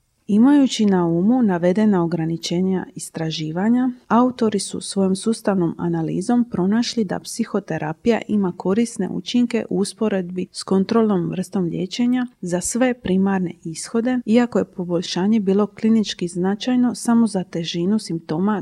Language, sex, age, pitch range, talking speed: Croatian, female, 40-59, 180-230 Hz, 120 wpm